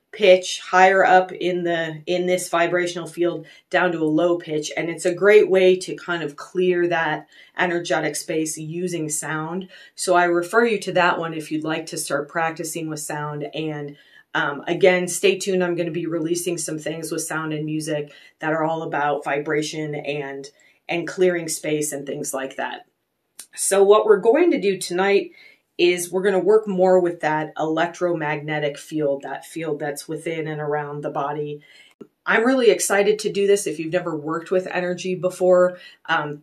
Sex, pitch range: female, 155-180 Hz